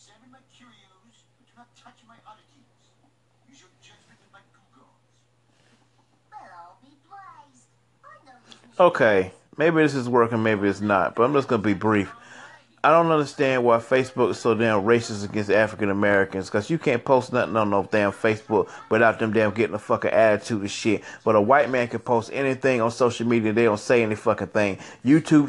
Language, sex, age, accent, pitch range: English, male, 30-49, American, 110-135 Hz